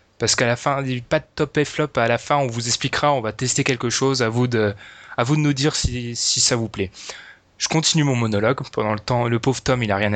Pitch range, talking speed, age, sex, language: 115-140 Hz, 270 wpm, 20-39, male, French